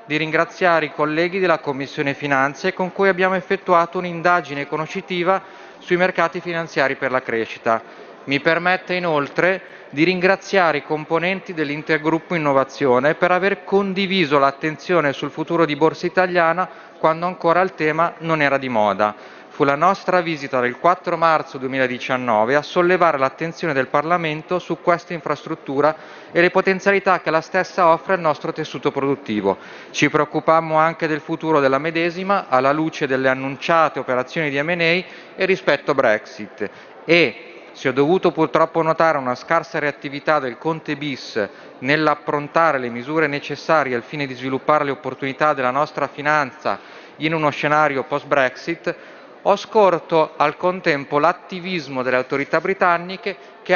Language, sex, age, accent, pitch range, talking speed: Italian, male, 40-59, native, 140-175 Hz, 140 wpm